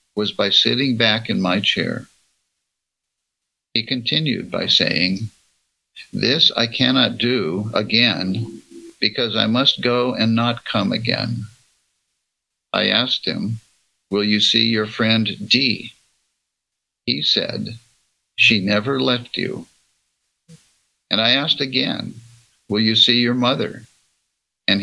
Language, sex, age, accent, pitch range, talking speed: English, male, 60-79, American, 105-125 Hz, 120 wpm